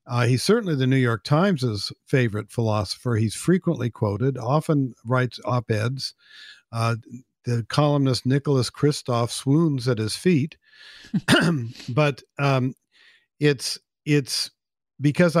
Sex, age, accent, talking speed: male, 50-69, American, 115 wpm